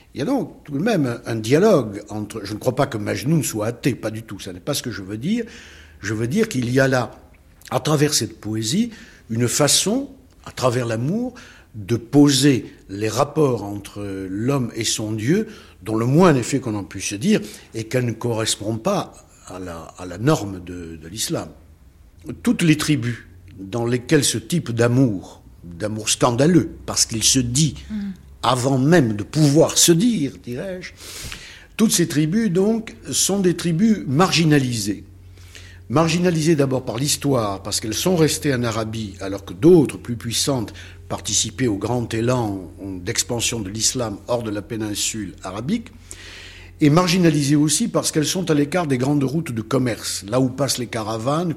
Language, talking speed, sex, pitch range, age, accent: French, 175 wpm, male, 100-150 Hz, 60-79, French